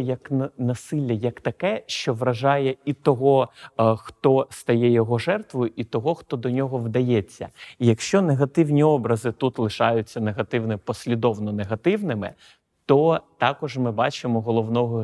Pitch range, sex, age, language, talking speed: 110-135 Hz, male, 30-49, Ukrainian, 130 wpm